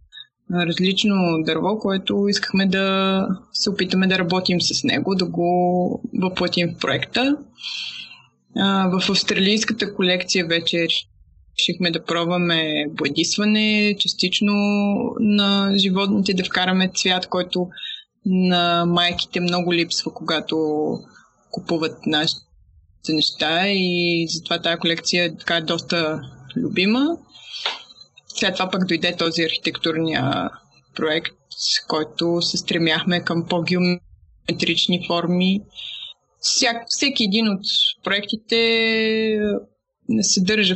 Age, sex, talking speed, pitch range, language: 20-39, female, 100 wpm, 170-210 Hz, Bulgarian